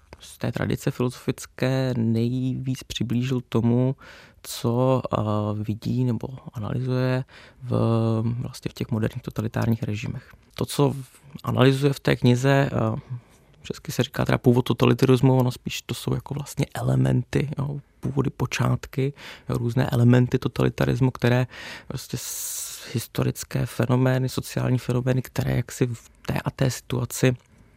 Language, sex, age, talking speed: Czech, male, 20-39, 120 wpm